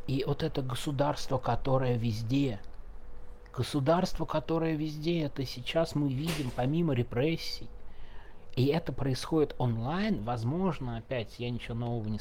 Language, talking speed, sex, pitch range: Russian, 125 wpm, male, 115-140 Hz